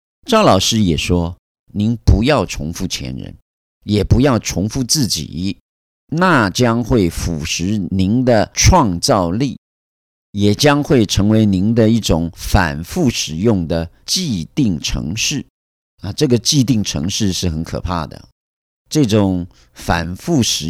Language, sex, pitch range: Chinese, male, 85-120 Hz